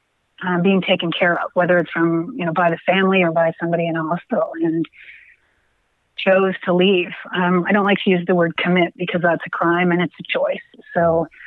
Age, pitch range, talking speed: 30-49, 175-205 Hz, 215 wpm